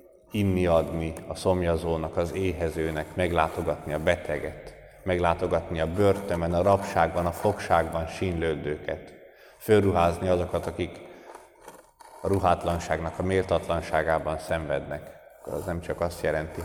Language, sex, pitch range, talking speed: Hungarian, male, 80-95 Hz, 110 wpm